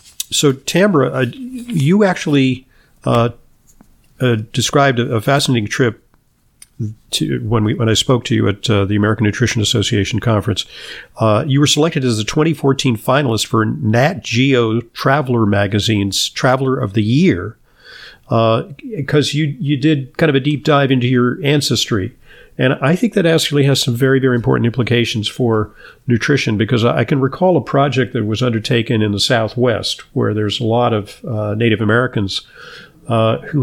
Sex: male